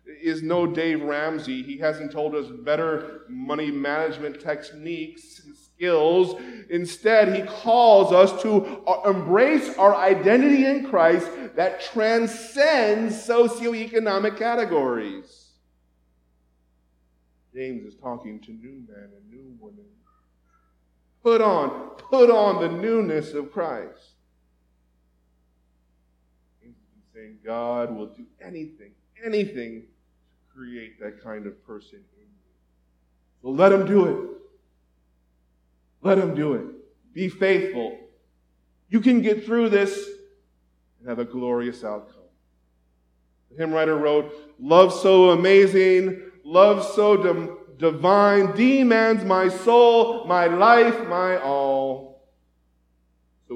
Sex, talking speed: male, 110 wpm